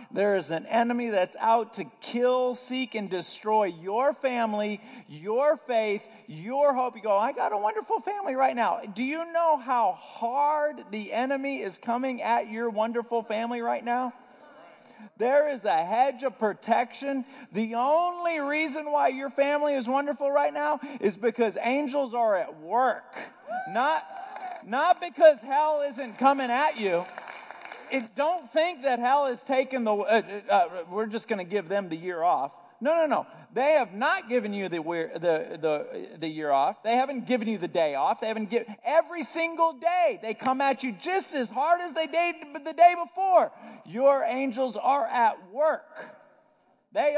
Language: English